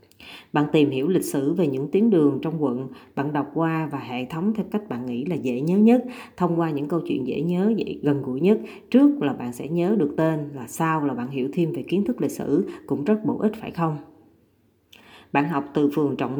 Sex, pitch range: female, 140-185 Hz